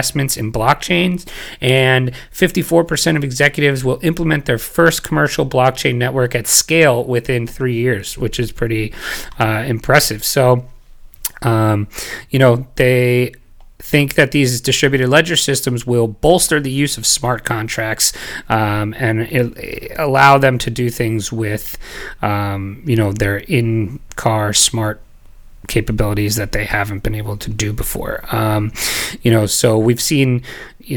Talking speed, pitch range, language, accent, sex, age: 145 wpm, 110-135 Hz, English, American, male, 30-49